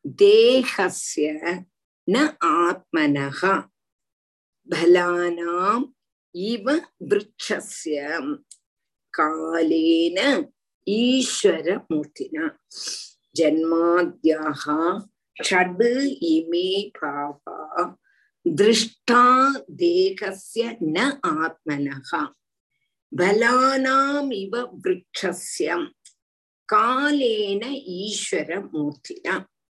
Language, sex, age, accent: Tamil, female, 50-69, native